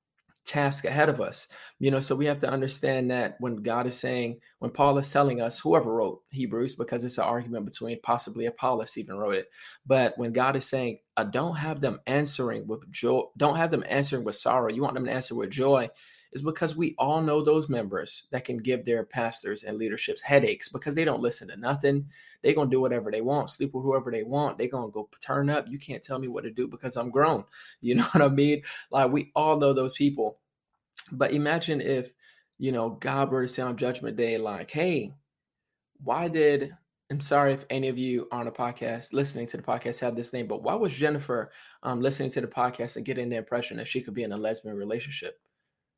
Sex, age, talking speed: male, 30-49, 225 wpm